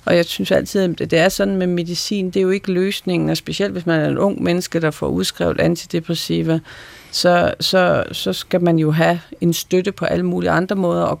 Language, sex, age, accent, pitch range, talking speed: Danish, female, 40-59, native, 160-185 Hz, 225 wpm